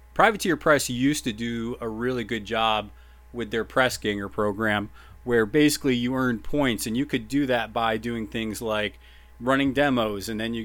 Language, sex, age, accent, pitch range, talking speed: English, male, 30-49, American, 105-130 Hz, 185 wpm